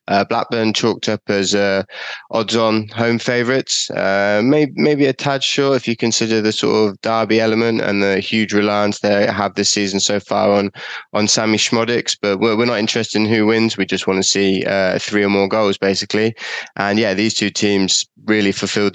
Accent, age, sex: British, 20-39, male